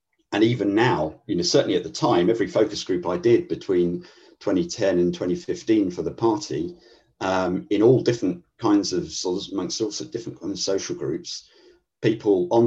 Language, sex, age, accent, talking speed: English, male, 50-69, British, 180 wpm